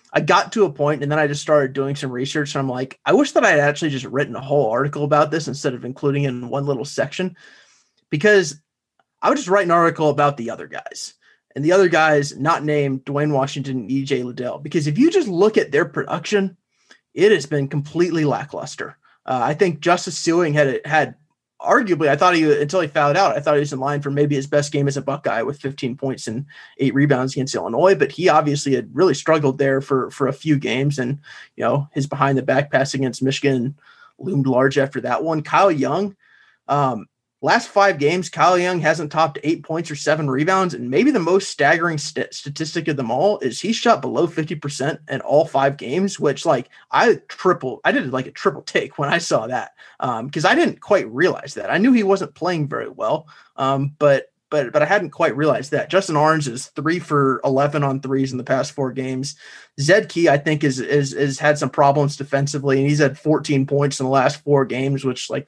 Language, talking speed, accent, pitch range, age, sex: English, 225 wpm, American, 135-160 Hz, 30-49, male